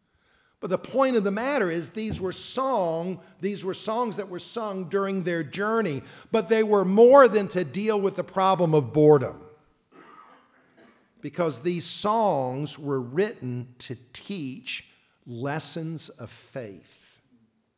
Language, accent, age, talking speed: English, American, 50-69, 140 wpm